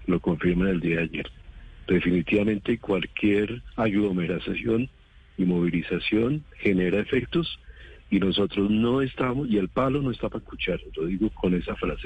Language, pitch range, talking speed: Spanish, 90-110 Hz, 145 wpm